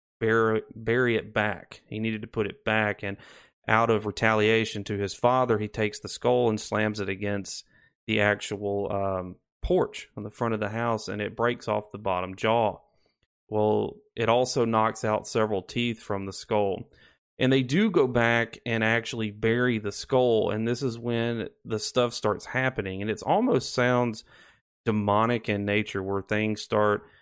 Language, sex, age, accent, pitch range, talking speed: English, male, 30-49, American, 105-120 Hz, 175 wpm